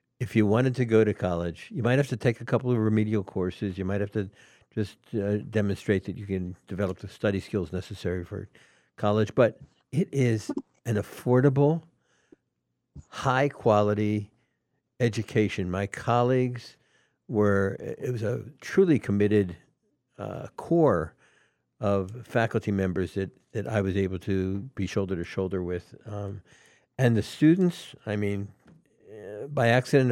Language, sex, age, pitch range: English, male, 60-79, 95-115 Hz